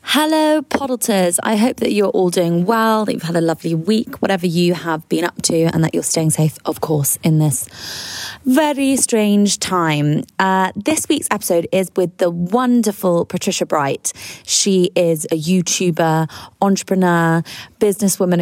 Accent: British